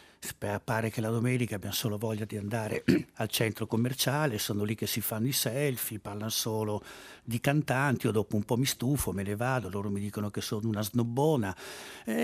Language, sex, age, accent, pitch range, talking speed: Italian, male, 60-79, native, 100-120 Hz, 195 wpm